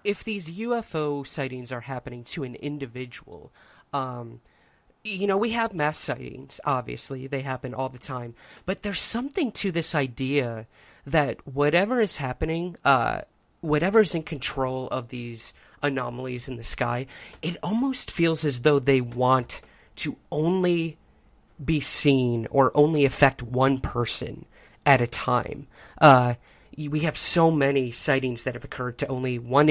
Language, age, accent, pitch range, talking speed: English, 30-49, American, 125-155 Hz, 150 wpm